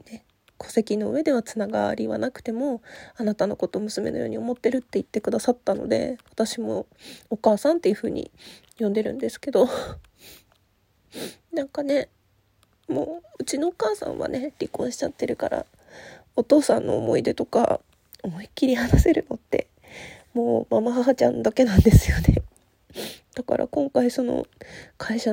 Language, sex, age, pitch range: Japanese, female, 20-39, 215-300 Hz